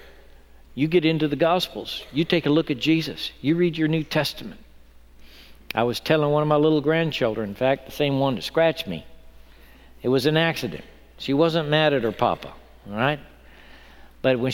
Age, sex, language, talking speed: 60-79, male, English, 190 wpm